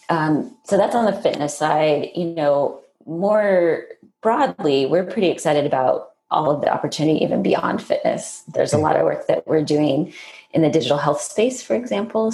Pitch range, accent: 150-220 Hz, American